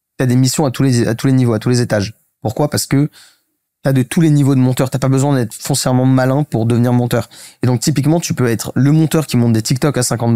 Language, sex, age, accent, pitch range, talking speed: French, male, 20-39, French, 120-145 Hz, 265 wpm